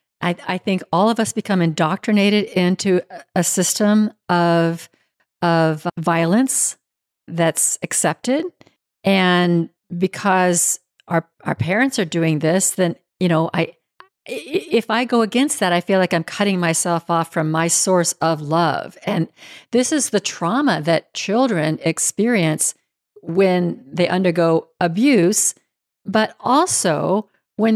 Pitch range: 175-220 Hz